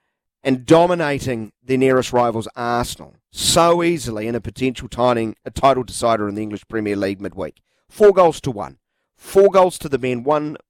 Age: 40-59